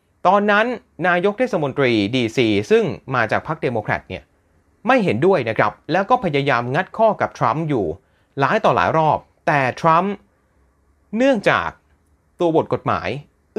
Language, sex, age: Thai, male, 30-49